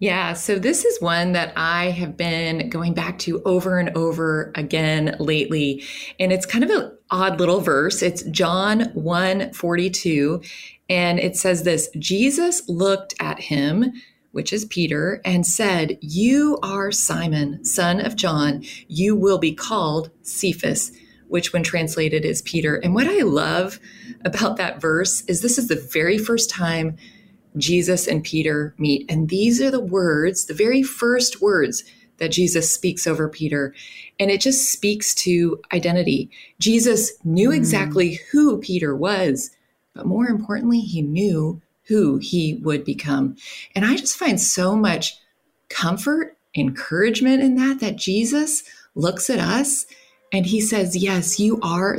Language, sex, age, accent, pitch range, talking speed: English, female, 30-49, American, 165-220 Hz, 150 wpm